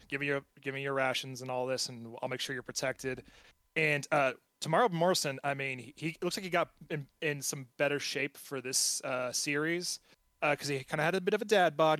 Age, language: 30-49, English